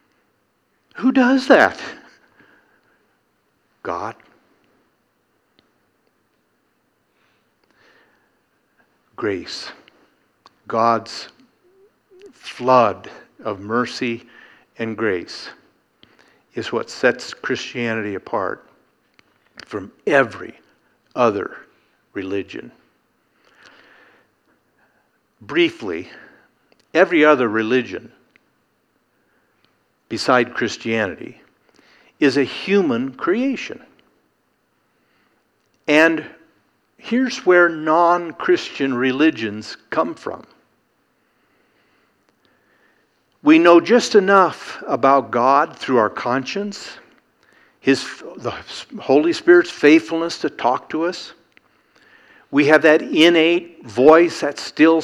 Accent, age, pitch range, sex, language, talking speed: American, 60-79, 130-195 Hz, male, English, 70 wpm